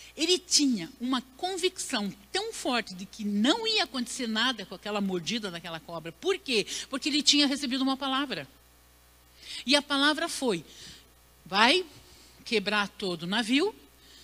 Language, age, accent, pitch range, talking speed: Portuguese, 60-79, Brazilian, 215-315 Hz, 145 wpm